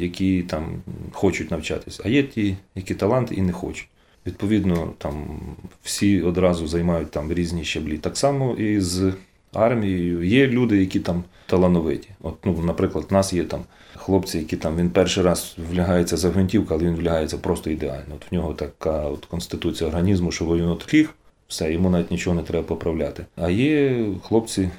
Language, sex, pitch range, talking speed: Ukrainian, male, 85-100 Hz, 170 wpm